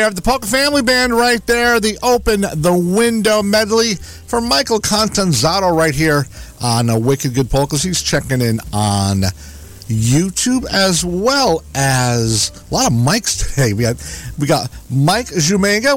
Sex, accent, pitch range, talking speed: male, American, 135-215 Hz, 160 wpm